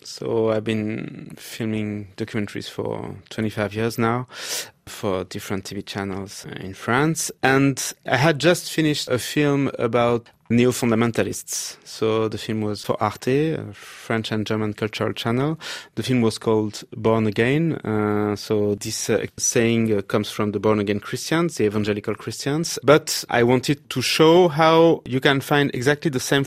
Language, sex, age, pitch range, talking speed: English, male, 30-49, 110-135 Hz, 155 wpm